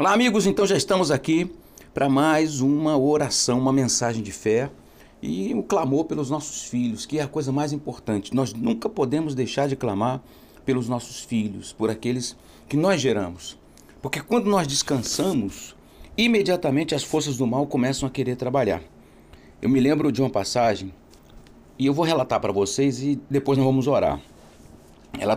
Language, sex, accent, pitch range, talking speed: Portuguese, male, Brazilian, 95-140 Hz, 170 wpm